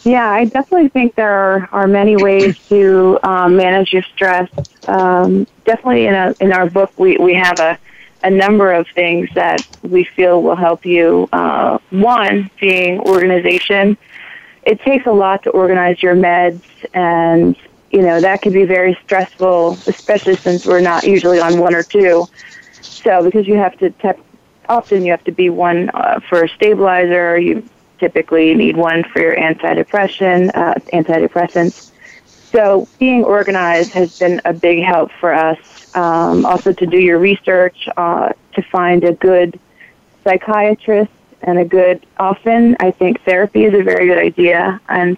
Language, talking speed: English, 165 wpm